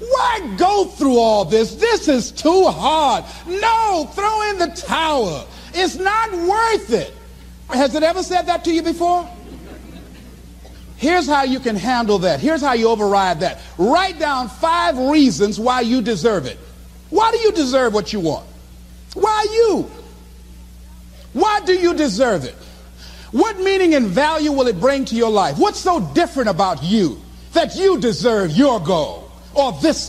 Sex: male